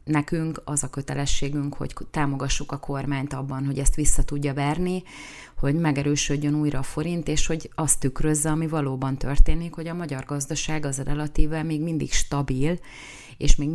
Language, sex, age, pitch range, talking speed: Hungarian, female, 30-49, 140-155 Hz, 165 wpm